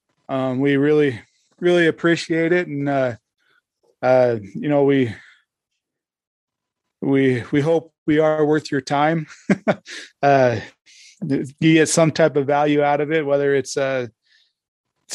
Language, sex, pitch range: English, male, 140-160 Hz